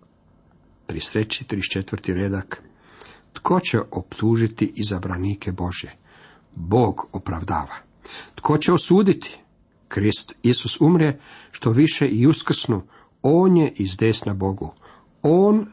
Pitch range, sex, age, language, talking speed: 100-145 Hz, male, 50-69, Croatian, 95 wpm